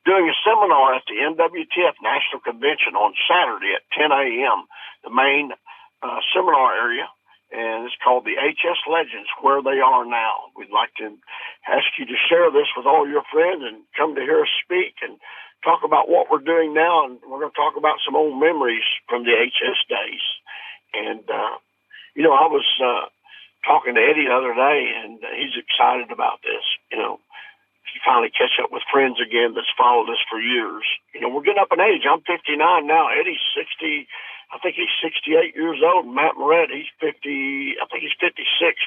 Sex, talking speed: male, 190 wpm